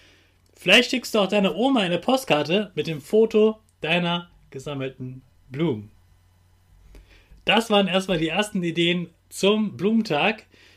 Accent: German